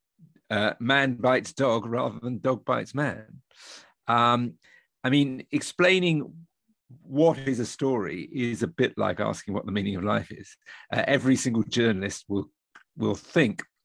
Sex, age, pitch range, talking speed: male, 50-69, 105-135 Hz, 150 wpm